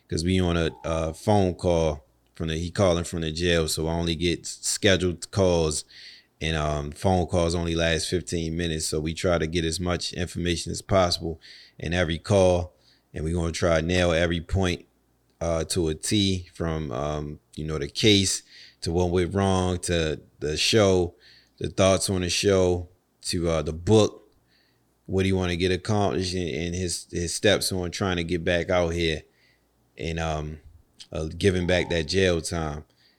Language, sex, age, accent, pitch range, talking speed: English, male, 30-49, American, 85-95 Hz, 185 wpm